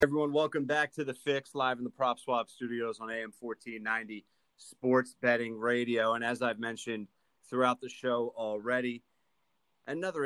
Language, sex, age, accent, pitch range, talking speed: English, male, 30-49, American, 110-125 Hz, 160 wpm